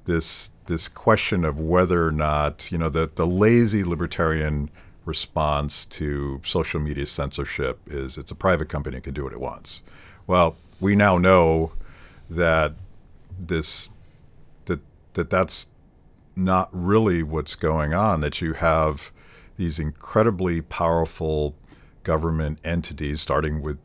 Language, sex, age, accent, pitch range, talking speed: English, male, 50-69, American, 75-85 Hz, 135 wpm